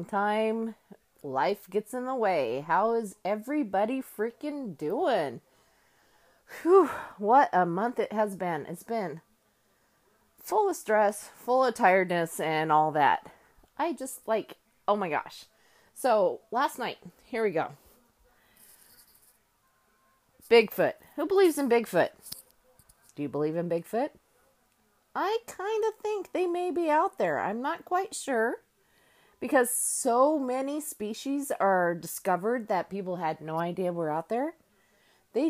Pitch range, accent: 175-280 Hz, American